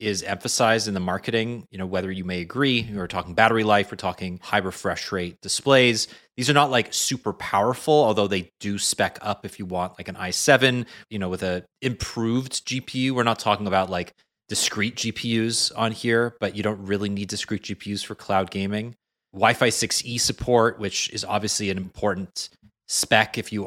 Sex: male